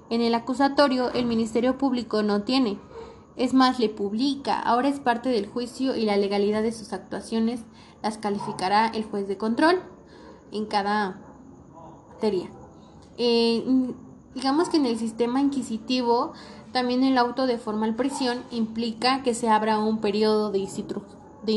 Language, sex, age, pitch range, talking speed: Spanish, female, 20-39, 215-255 Hz, 145 wpm